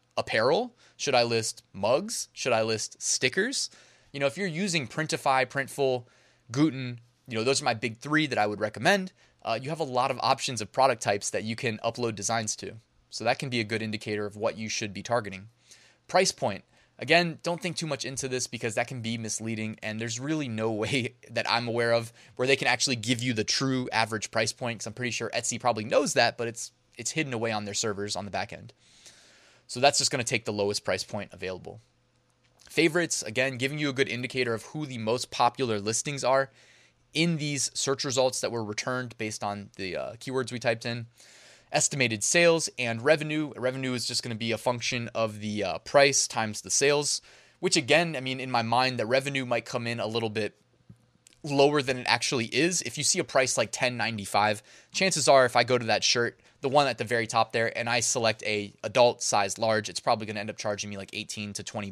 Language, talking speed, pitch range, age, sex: English, 225 wpm, 110-135 Hz, 20-39, male